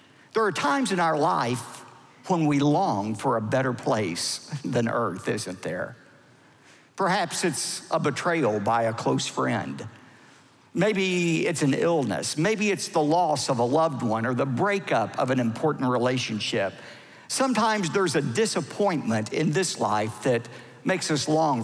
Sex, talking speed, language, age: male, 155 wpm, English, 50-69